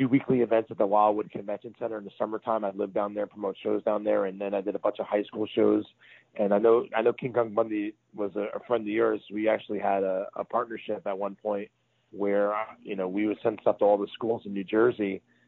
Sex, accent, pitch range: male, American, 100-110 Hz